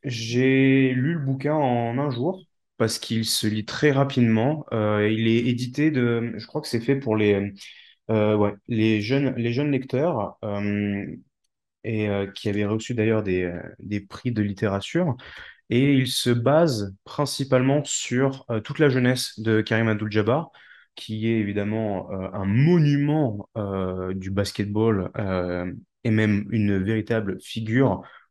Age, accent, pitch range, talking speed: 20-39, French, 105-125 Hz, 155 wpm